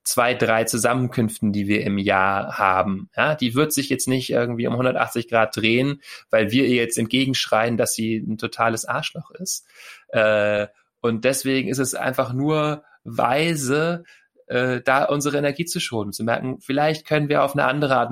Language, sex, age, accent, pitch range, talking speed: German, male, 30-49, German, 105-130 Hz, 165 wpm